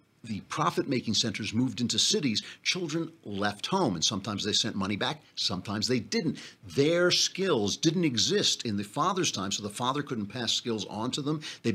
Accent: American